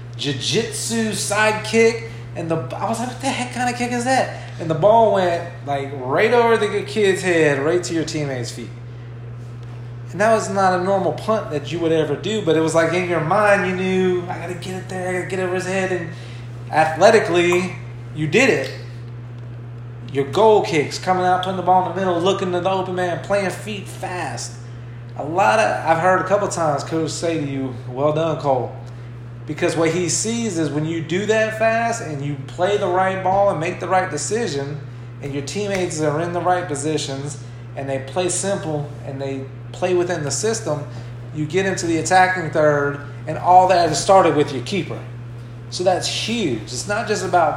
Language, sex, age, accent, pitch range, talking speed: English, male, 30-49, American, 120-180 Hz, 205 wpm